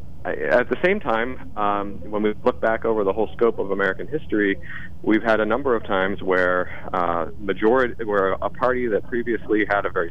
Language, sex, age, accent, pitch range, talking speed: English, male, 40-59, American, 85-110 Hz, 195 wpm